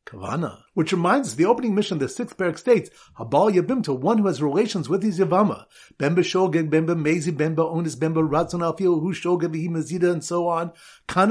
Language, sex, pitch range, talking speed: English, male, 155-215 Hz, 195 wpm